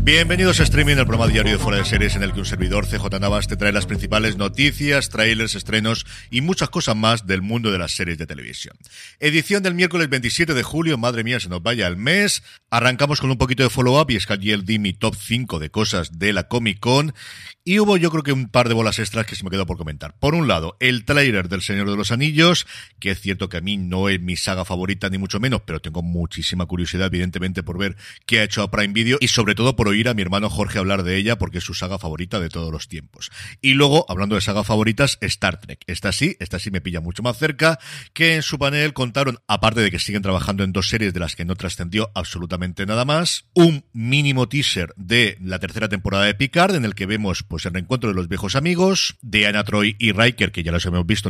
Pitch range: 95-125 Hz